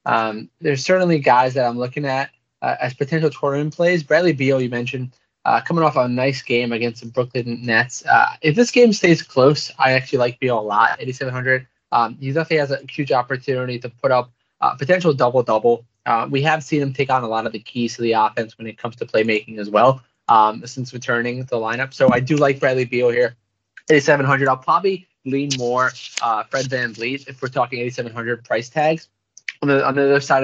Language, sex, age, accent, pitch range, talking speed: English, male, 20-39, American, 120-140 Hz, 215 wpm